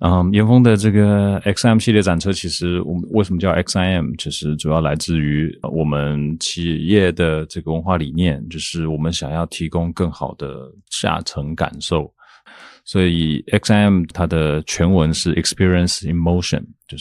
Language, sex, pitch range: Chinese, male, 75-90 Hz